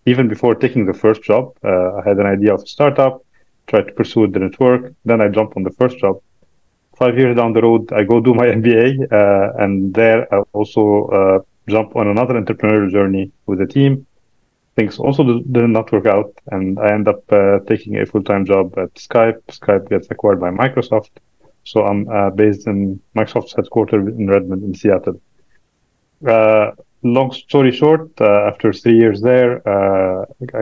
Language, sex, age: Arabic, male, 30-49